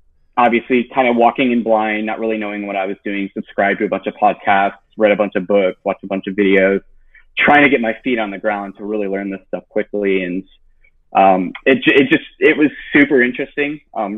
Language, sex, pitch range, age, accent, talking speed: English, male, 95-110 Hz, 20-39, American, 225 wpm